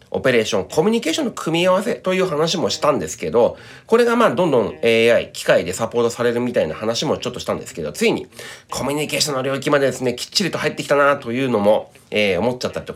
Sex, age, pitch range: male, 30-49, 115-190 Hz